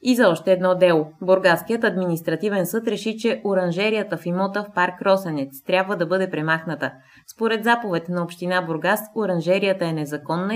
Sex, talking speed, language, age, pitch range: female, 160 wpm, Bulgarian, 20-39, 165-210 Hz